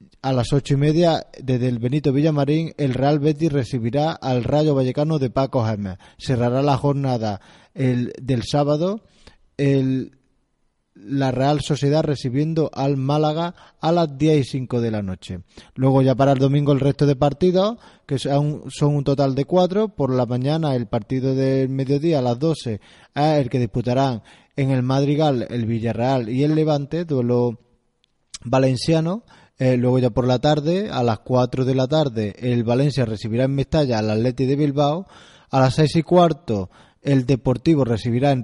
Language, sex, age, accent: Spanish, male, 20-39, Spanish